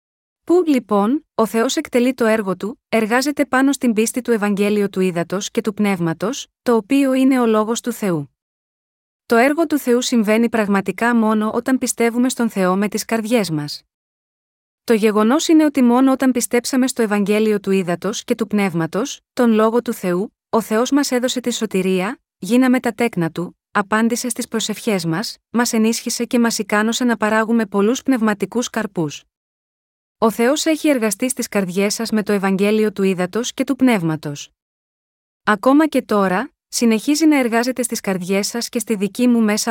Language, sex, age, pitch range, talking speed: Greek, female, 30-49, 200-245 Hz, 170 wpm